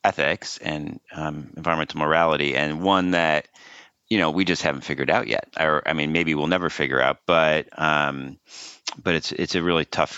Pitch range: 75-85 Hz